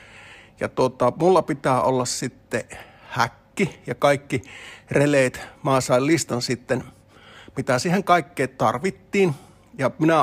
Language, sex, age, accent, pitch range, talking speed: Finnish, male, 50-69, native, 120-145 Hz, 115 wpm